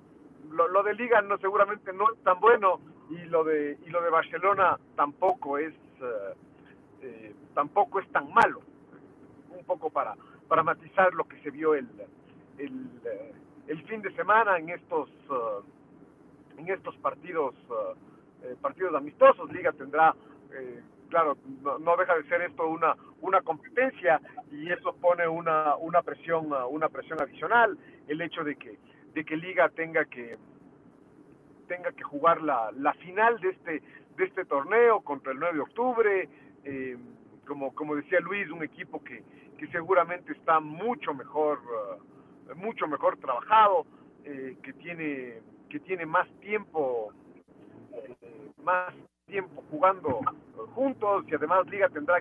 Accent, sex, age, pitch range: Mexican, male, 50-69, 150-195 Hz